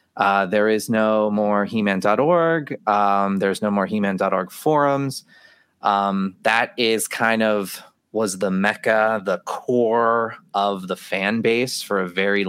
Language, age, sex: English, 20-39, male